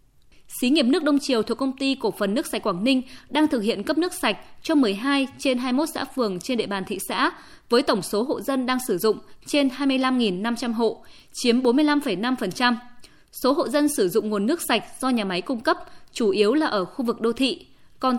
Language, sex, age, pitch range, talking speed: Vietnamese, female, 20-39, 215-280 Hz, 220 wpm